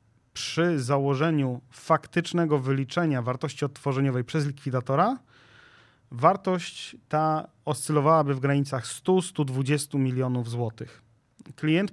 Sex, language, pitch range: male, Polish, 130-160 Hz